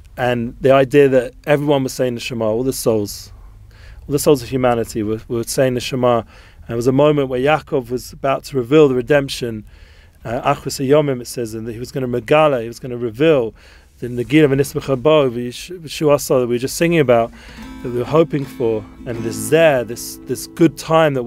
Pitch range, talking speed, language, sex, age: 115-140 Hz, 215 wpm, English, male, 30-49